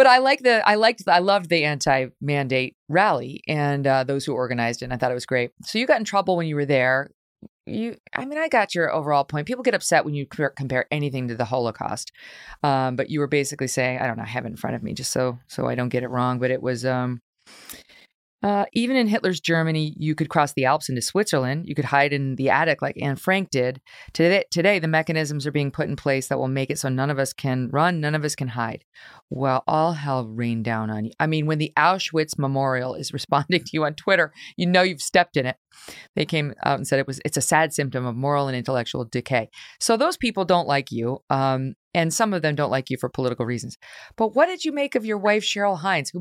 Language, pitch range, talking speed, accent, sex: English, 130-170 Hz, 255 wpm, American, female